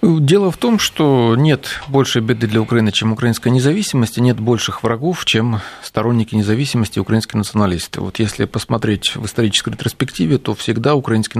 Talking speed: 155 wpm